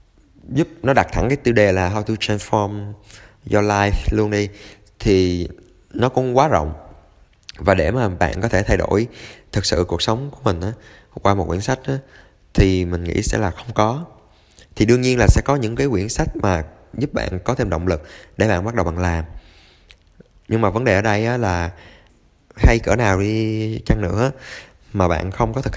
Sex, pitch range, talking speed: male, 90-115 Hz, 200 wpm